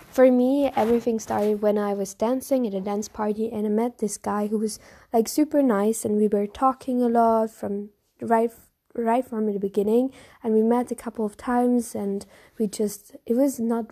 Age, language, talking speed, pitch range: 20-39, English, 205 wpm, 210-235 Hz